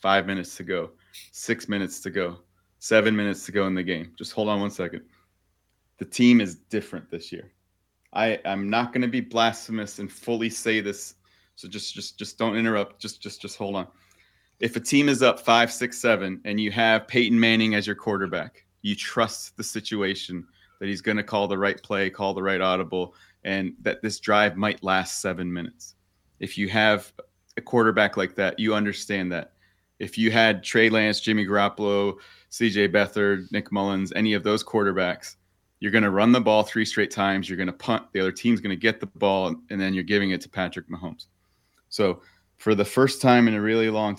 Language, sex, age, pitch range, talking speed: English, male, 30-49, 95-110 Hz, 205 wpm